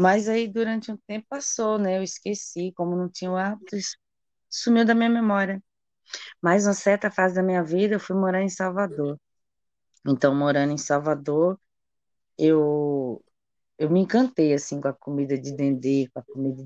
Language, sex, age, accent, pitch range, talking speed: Portuguese, female, 20-39, Brazilian, 140-180 Hz, 175 wpm